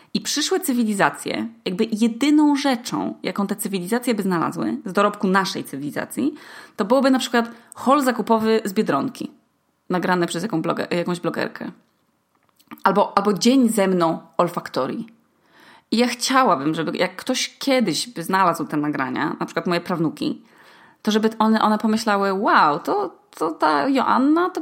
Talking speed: 145 wpm